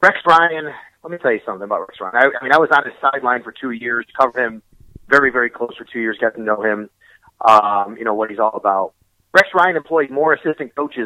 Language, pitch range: English, 130-175 Hz